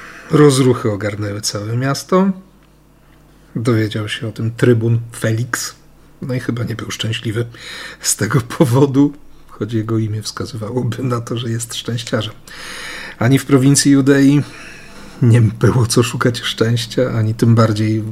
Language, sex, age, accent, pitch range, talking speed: Polish, male, 40-59, native, 110-150 Hz, 135 wpm